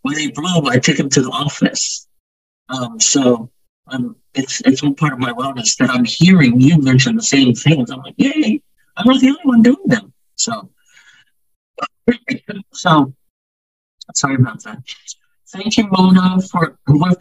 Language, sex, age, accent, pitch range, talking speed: English, male, 50-69, American, 140-190 Hz, 165 wpm